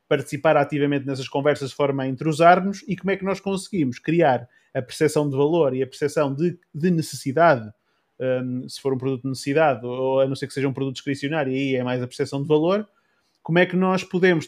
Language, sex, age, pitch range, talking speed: Portuguese, male, 20-39, 145-185 Hz, 225 wpm